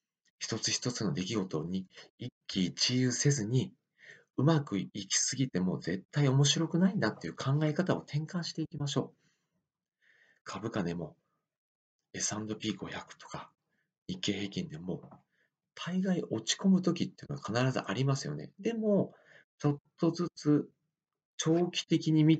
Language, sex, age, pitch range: Japanese, male, 40-59, 100-150 Hz